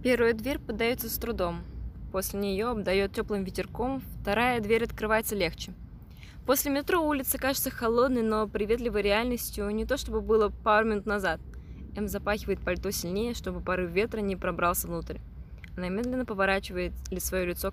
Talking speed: 150 wpm